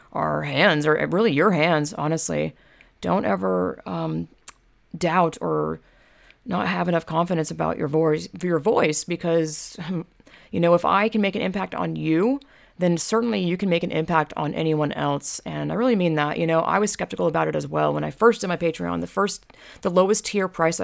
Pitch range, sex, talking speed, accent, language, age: 155-190 Hz, female, 200 wpm, American, English, 30-49